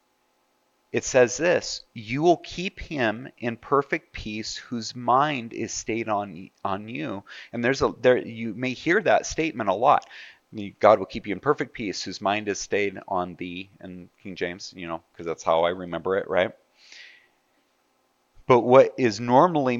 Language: English